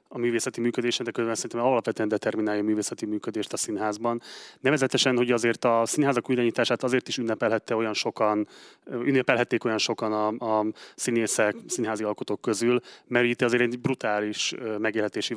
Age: 30-49